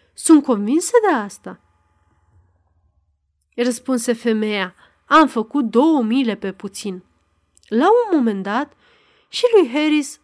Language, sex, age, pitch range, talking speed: Romanian, female, 30-49, 210-295 Hz, 110 wpm